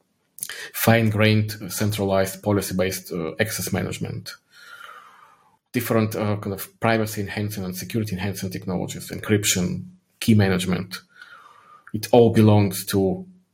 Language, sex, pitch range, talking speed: English, male, 100-115 Hz, 110 wpm